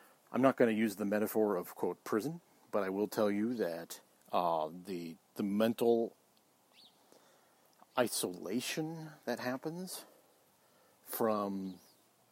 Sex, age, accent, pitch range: male, 50-69, American, 105-130 Hz